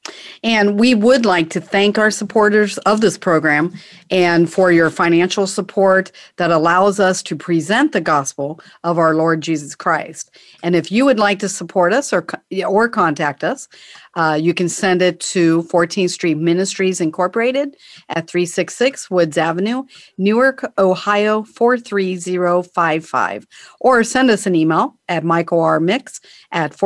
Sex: female